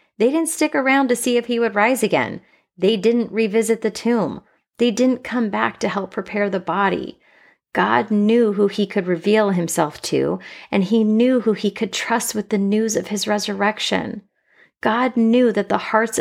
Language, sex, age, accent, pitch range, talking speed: English, female, 30-49, American, 185-225 Hz, 190 wpm